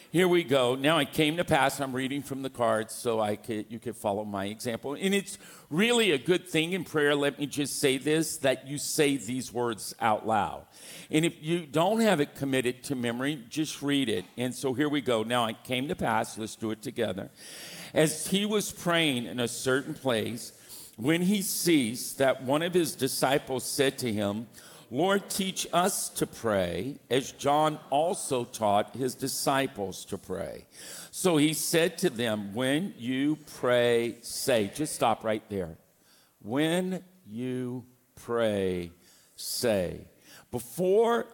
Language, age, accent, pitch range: English, 50-69, American, 110-150 Hz